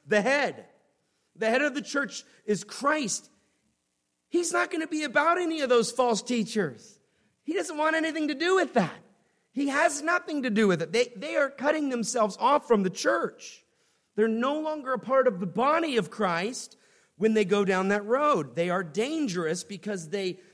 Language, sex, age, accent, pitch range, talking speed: English, male, 40-59, American, 140-230 Hz, 190 wpm